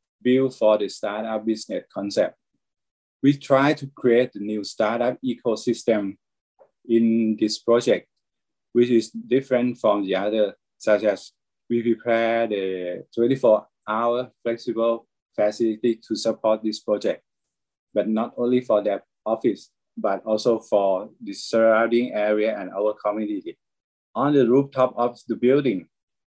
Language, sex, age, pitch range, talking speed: English, male, 20-39, 105-125 Hz, 130 wpm